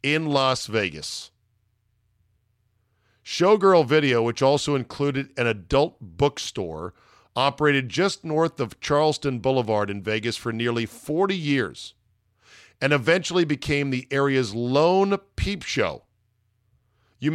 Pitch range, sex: 110-145 Hz, male